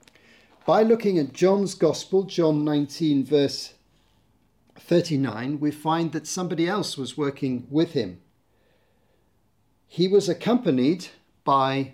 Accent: British